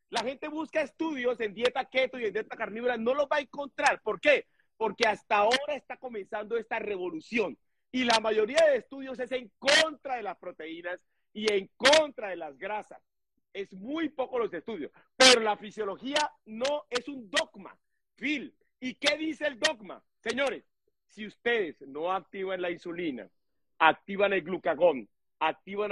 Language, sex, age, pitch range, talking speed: Spanish, male, 50-69, 190-275 Hz, 160 wpm